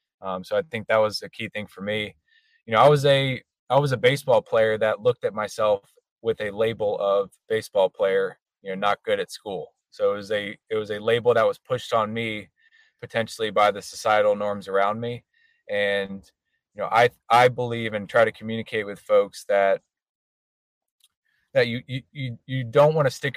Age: 20-39